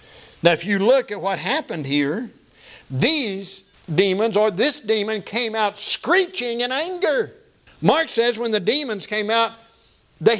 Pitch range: 185-235 Hz